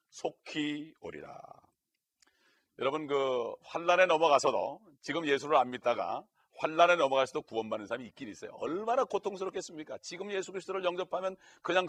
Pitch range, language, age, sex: 140-185 Hz, Korean, 40-59, male